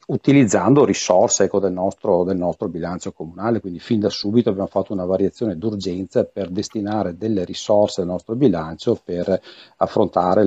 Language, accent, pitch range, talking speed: Italian, native, 90-110 Hz, 155 wpm